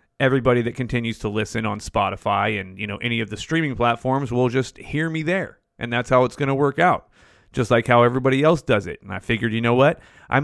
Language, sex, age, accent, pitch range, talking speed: English, male, 30-49, American, 115-150 Hz, 240 wpm